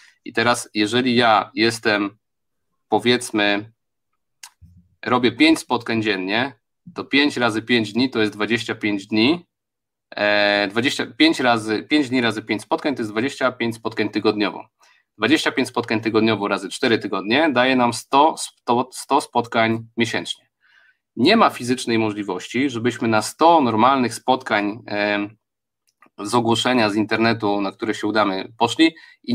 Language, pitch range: Polish, 110-130 Hz